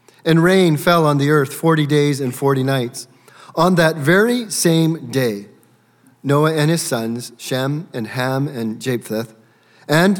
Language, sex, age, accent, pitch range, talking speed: English, male, 40-59, American, 120-160 Hz, 155 wpm